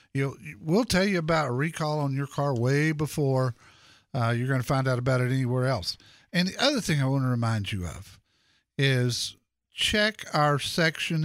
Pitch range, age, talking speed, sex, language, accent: 120-155 Hz, 50-69, 195 wpm, male, English, American